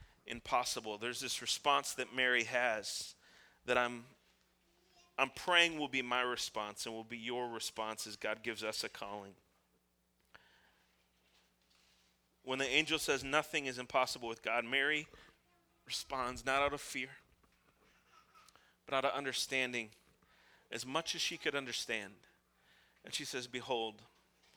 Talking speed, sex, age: 135 wpm, male, 30-49